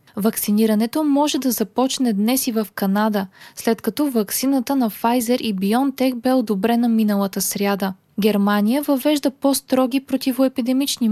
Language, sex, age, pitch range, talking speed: Bulgarian, female, 20-39, 210-255 Hz, 125 wpm